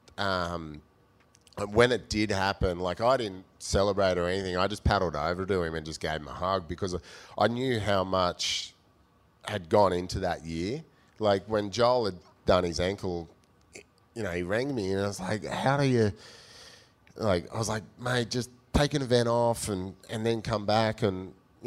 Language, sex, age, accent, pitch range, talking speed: English, male, 30-49, Australian, 90-115 Hz, 190 wpm